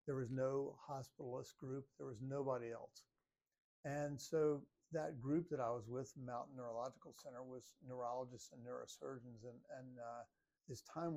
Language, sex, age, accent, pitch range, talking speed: English, male, 60-79, American, 120-135 Hz, 155 wpm